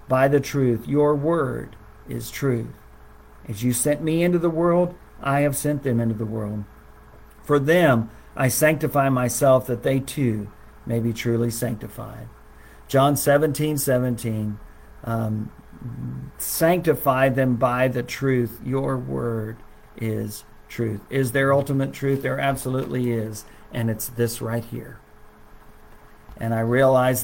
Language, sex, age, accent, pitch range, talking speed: English, male, 50-69, American, 115-135 Hz, 135 wpm